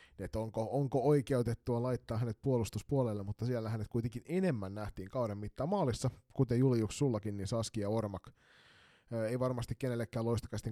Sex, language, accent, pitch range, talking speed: male, Finnish, native, 100-120 Hz, 140 wpm